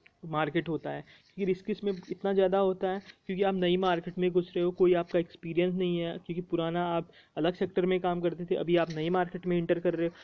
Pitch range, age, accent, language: 165-185 Hz, 20-39, native, Hindi